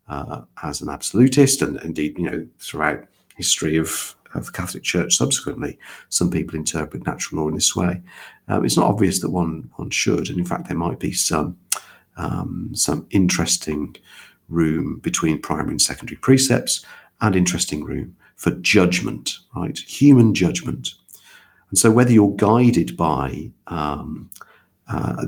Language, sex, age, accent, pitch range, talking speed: English, male, 50-69, British, 80-105 Hz, 150 wpm